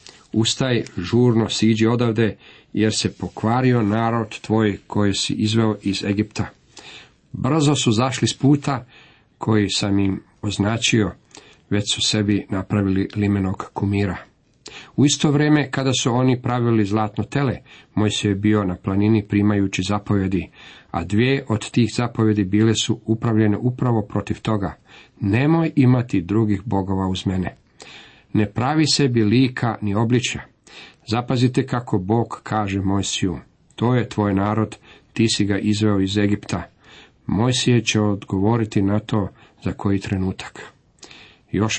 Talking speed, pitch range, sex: 135 wpm, 100-120 Hz, male